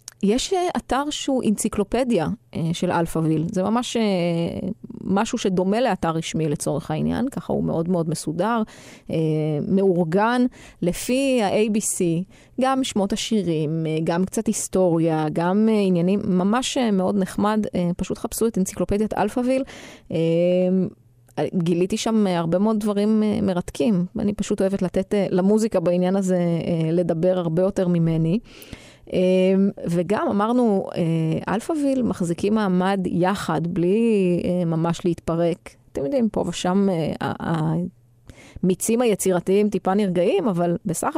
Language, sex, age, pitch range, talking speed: Hebrew, female, 20-39, 175-210 Hz, 110 wpm